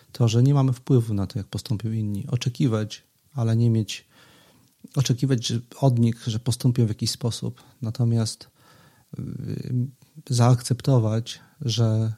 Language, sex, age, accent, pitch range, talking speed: Polish, male, 40-59, native, 110-130 Hz, 130 wpm